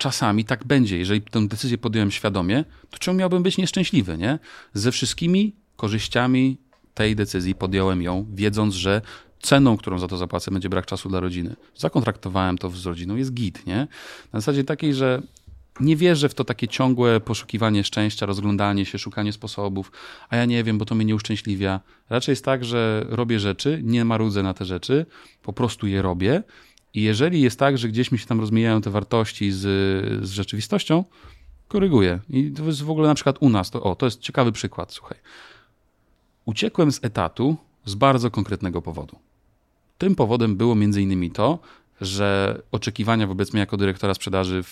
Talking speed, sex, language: 180 wpm, male, Polish